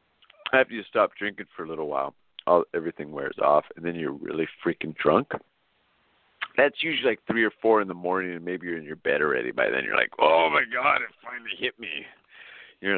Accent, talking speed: American, 215 wpm